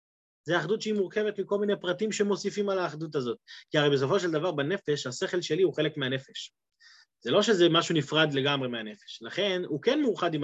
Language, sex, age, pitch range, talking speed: Hebrew, male, 30-49, 140-200 Hz, 195 wpm